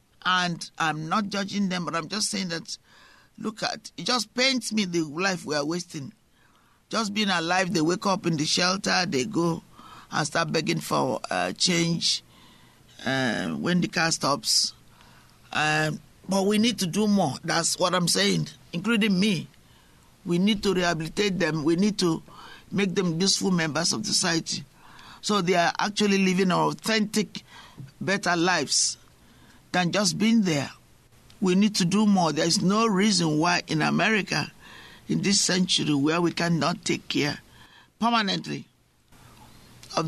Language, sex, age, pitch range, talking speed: English, male, 50-69, 165-205 Hz, 155 wpm